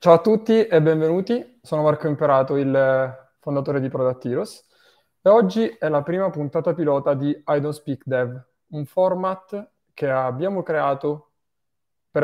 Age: 20-39